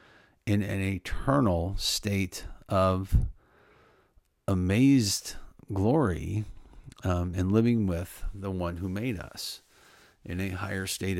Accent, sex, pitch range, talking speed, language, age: American, male, 90-110 Hz, 105 wpm, English, 50-69